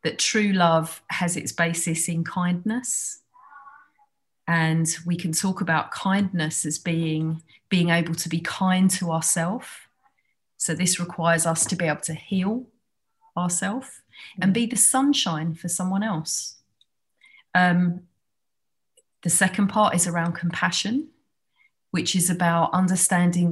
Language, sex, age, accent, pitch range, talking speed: English, female, 30-49, British, 160-185 Hz, 130 wpm